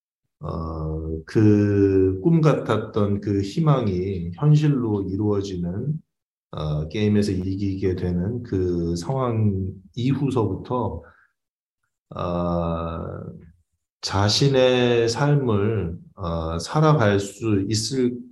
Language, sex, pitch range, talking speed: English, male, 85-115 Hz, 70 wpm